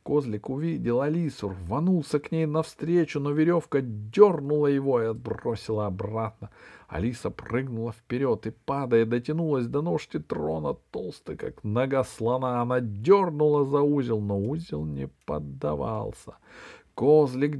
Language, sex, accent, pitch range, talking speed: Russian, male, native, 105-145 Hz, 125 wpm